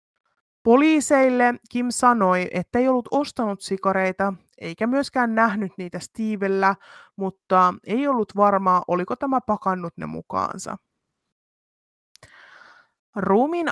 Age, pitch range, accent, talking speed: 30-49, 185-245 Hz, native, 100 wpm